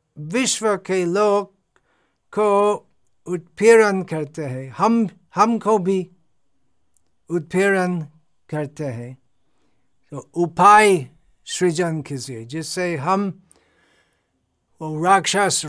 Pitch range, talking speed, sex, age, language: 155-190 Hz, 75 wpm, male, 60-79, Hindi